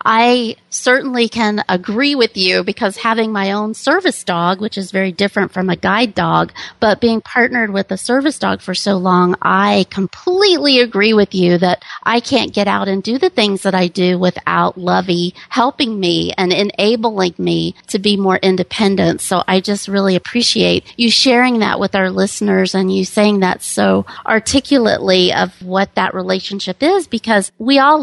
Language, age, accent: English, 40-59, American